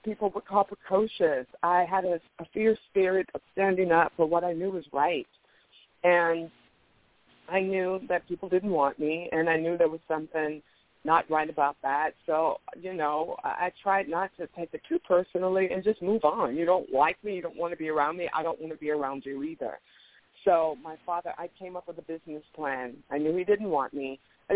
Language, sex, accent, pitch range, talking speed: English, female, American, 160-205 Hz, 215 wpm